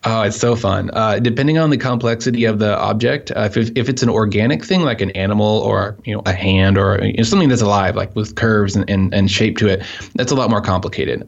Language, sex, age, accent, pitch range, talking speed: English, male, 20-39, American, 105-115 Hz, 250 wpm